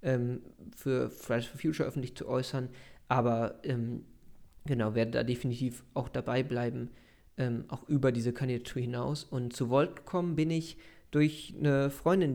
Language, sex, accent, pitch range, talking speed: German, male, German, 125-140 Hz, 150 wpm